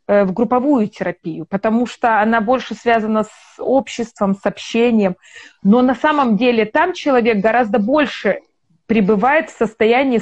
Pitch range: 200-255 Hz